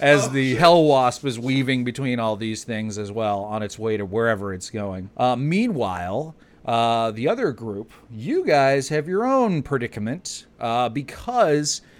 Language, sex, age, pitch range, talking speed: English, male, 40-59, 115-150 Hz, 165 wpm